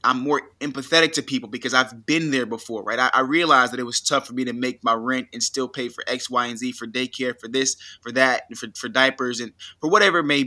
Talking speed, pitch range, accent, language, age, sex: 265 wpm, 125-150 Hz, American, English, 20-39, male